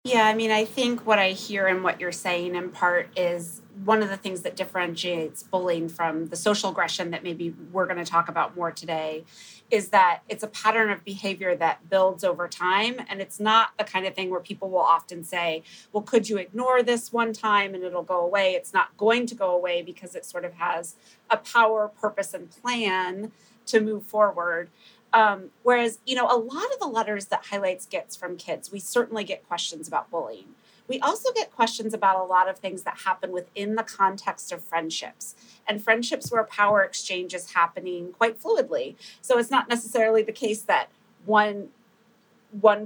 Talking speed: 200 wpm